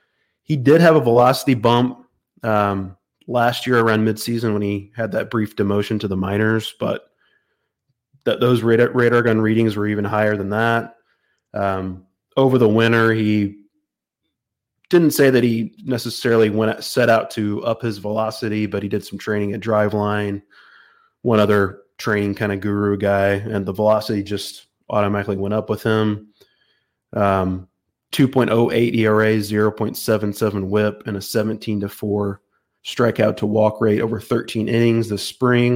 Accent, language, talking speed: American, English, 155 wpm